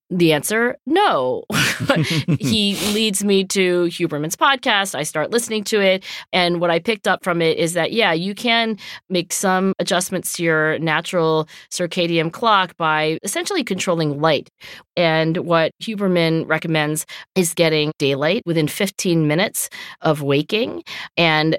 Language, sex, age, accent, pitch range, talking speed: English, female, 40-59, American, 160-210 Hz, 140 wpm